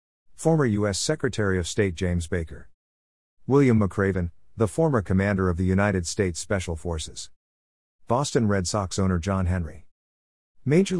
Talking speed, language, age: 135 wpm, English, 50-69